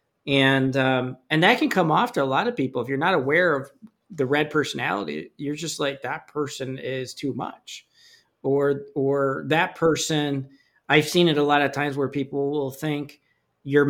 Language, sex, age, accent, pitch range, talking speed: English, male, 40-59, American, 135-160 Hz, 190 wpm